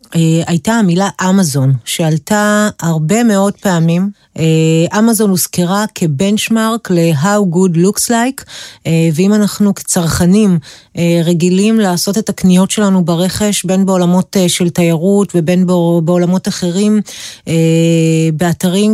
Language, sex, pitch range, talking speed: Hebrew, female, 165-200 Hz, 100 wpm